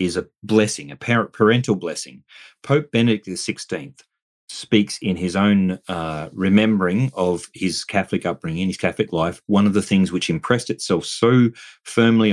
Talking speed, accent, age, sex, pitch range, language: 155 wpm, Australian, 30-49, male, 90-115 Hz, English